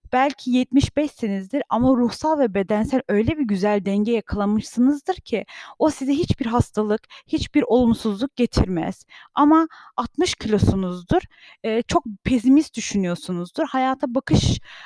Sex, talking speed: female, 110 wpm